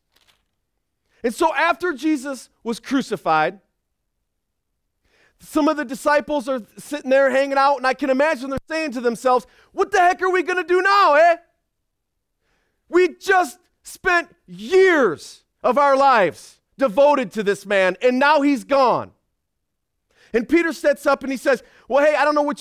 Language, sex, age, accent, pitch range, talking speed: English, male, 40-59, American, 230-290 Hz, 160 wpm